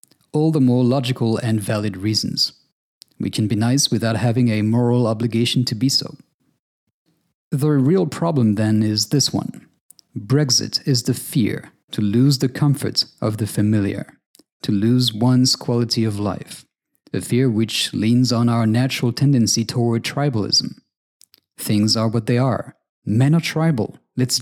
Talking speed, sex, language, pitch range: 150 wpm, male, English, 110-140 Hz